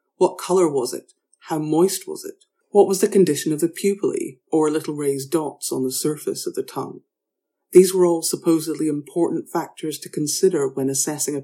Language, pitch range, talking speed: English, 145-185 Hz, 190 wpm